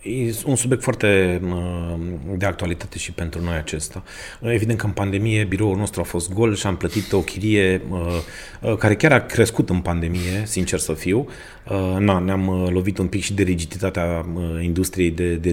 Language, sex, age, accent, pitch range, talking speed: Romanian, male, 30-49, native, 95-115 Hz, 170 wpm